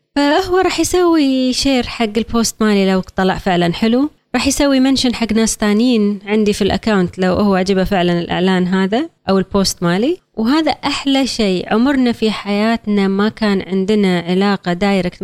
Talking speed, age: 160 wpm, 20-39